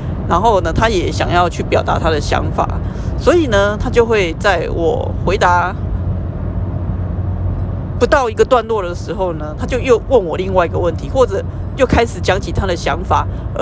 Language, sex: Chinese, female